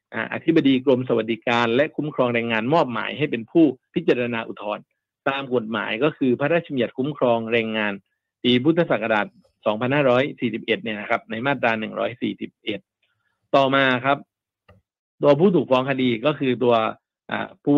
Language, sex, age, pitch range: Thai, male, 60-79, 115-150 Hz